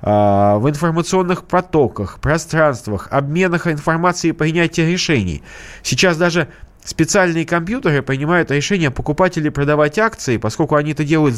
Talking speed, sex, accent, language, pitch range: 115 wpm, male, native, Russian, 120-175 Hz